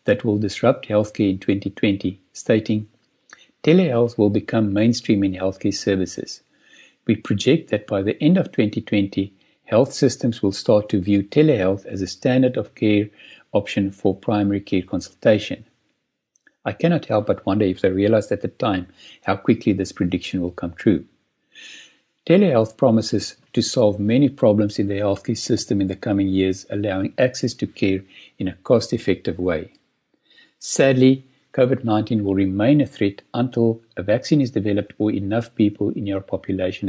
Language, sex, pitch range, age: English, male, 100-125 Hz, 60-79